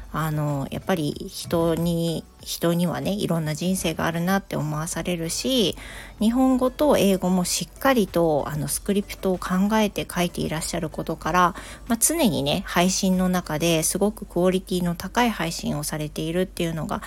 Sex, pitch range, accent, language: female, 155-190 Hz, native, Japanese